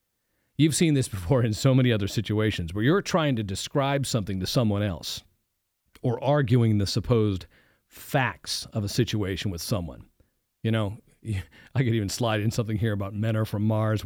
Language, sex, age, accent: English, male, 40-59, American